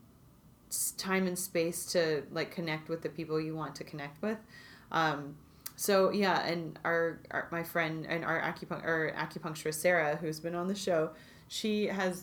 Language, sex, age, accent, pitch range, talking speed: English, female, 30-49, American, 155-175 Hz, 170 wpm